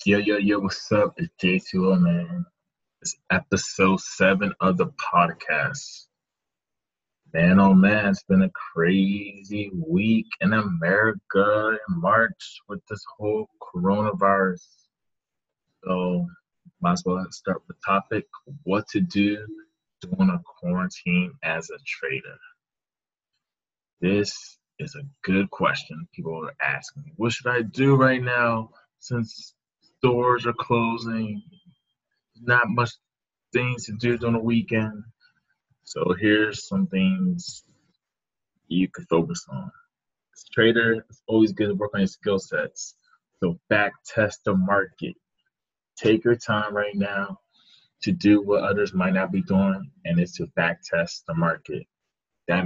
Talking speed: 135 wpm